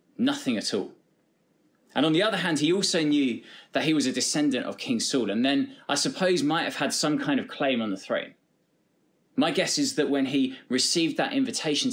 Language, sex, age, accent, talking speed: English, male, 20-39, British, 210 wpm